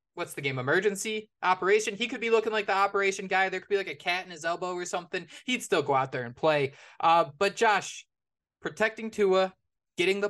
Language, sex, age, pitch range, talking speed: English, male, 20-39, 165-205 Hz, 220 wpm